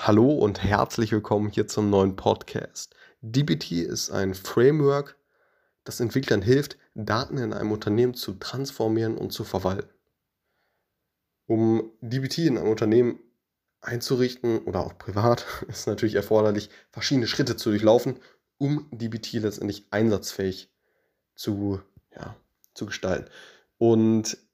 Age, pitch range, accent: 20-39, 95-115 Hz, German